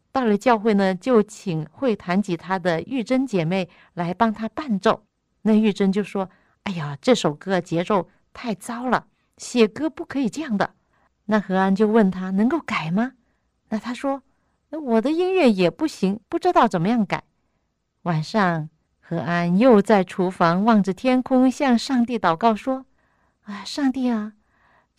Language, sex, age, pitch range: Chinese, female, 50-69, 195-270 Hz